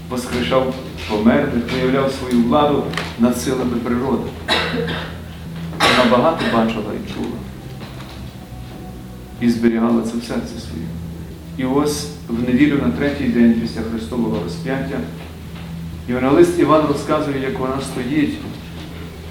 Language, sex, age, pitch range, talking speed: Ukrainian, male, 40-59, 100-130 Hz, 110 wpm